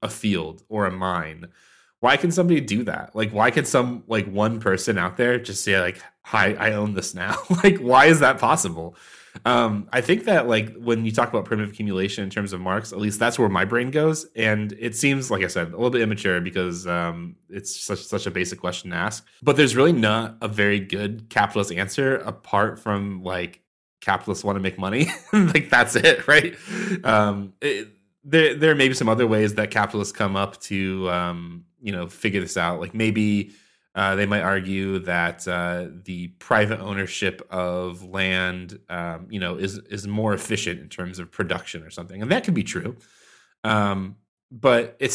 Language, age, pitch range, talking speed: English, 20-39, 90-115 Hz, 200 wpm